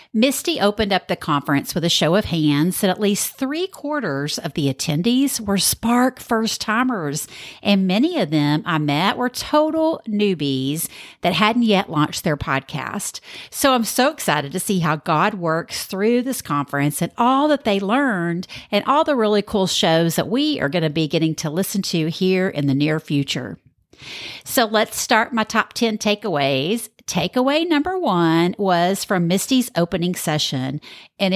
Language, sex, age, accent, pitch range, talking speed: English, female, 50-69, American, 155-230 Hz, 175 wpm